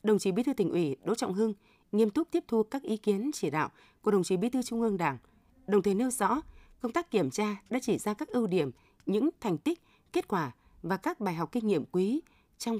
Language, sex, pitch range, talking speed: Vietnamese, female, 175-235 Hz, 250 wpm